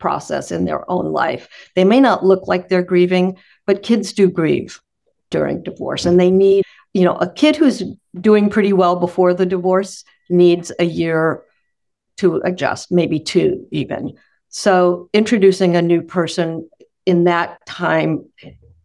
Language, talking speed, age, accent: English, 155 wpm, 50-69, American